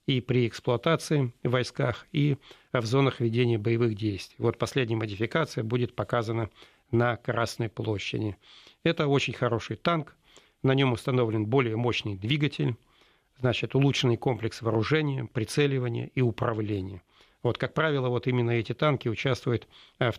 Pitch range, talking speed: 115-130 Hz, 135 wpm